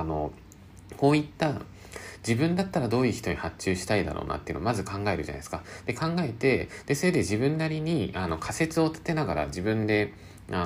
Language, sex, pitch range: Japanese, male, 85-125 Hz